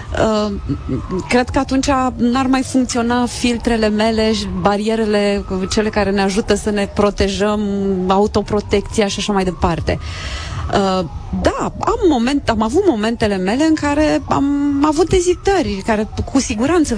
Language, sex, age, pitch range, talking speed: Romanian, female, 30-49, 205-280 Hz, 125 wpm